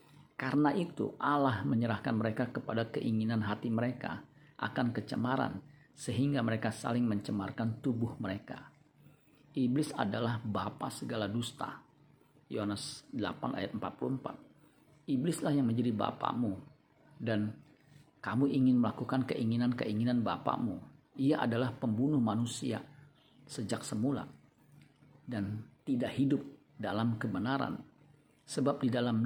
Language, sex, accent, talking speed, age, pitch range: Indonesian, male, native, 105 wpm, 50-69, 115-145 Hz